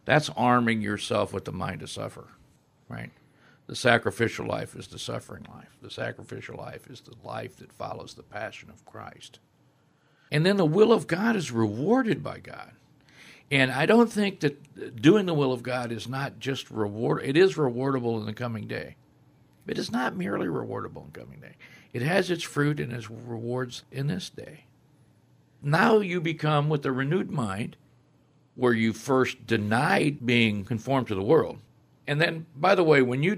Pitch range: 115-150 Hz